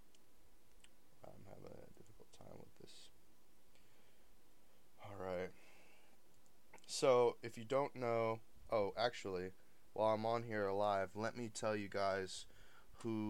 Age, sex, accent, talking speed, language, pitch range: 20-39, male, American, 125 wpm, English, 95-120 Hz